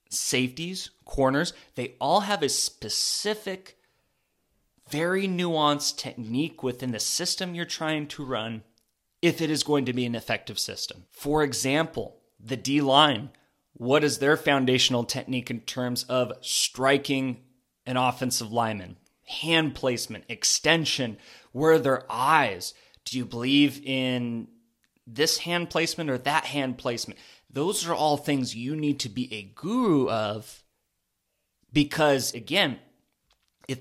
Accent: American